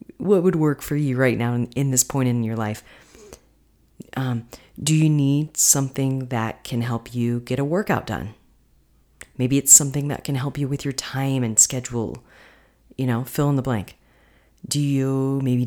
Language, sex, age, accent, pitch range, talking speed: English, female, 30-49, American, 120-140 Hz, 185 wpm